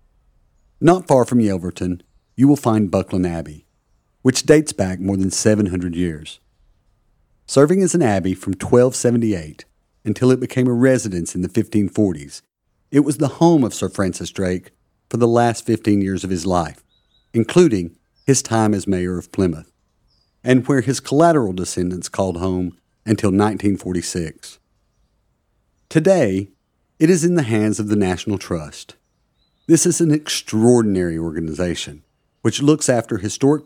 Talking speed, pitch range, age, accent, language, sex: 145 wpm, 95-130 Hz, 40-59, American, English, male